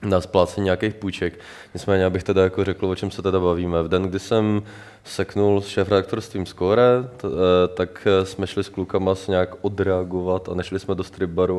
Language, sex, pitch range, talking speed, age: Czech, male, 90-100 Hz, 190 wpm, 20-39